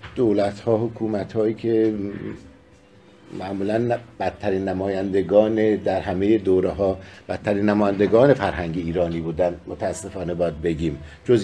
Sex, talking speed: male, 110 wpm